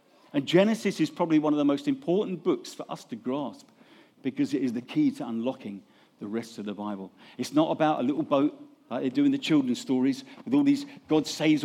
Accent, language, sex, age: British, English, male, 50-69